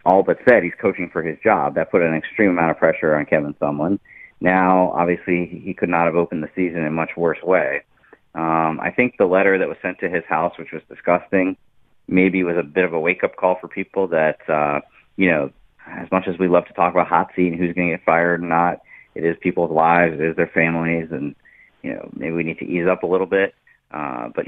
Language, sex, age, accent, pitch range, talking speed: English, male, 30-49, American, 80-95 Hz, 245 wpm